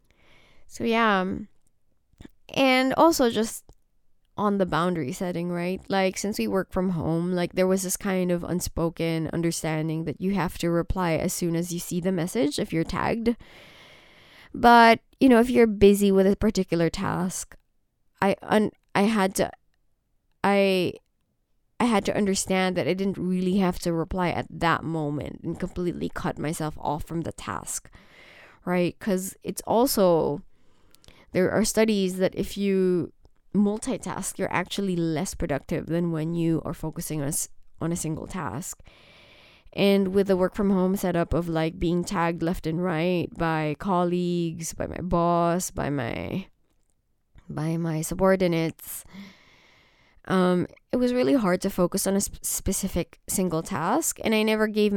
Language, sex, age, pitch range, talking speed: English, female, 20-39, 165-195 Hz, 155 wpm